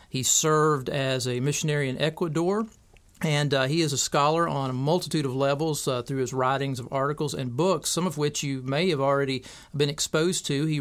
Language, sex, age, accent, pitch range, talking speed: English, male, 40-59, American, 135-155 Hz, 205 wpm